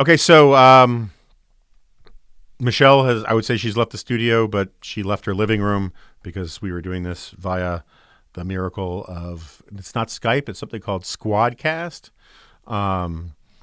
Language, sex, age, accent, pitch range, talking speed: English, male, 40-59, American, 95-120 Hz, 155 wpm